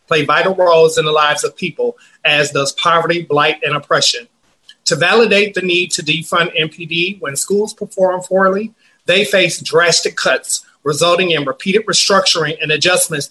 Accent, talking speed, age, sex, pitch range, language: American, 160 wpm, 30-49, male, 160-205 Hz, English